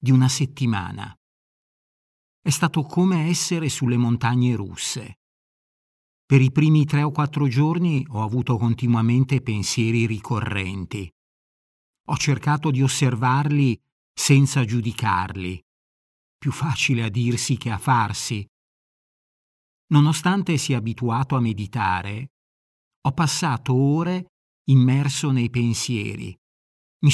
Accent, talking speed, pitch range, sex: native, 105 wpm, 110-145 Hz, male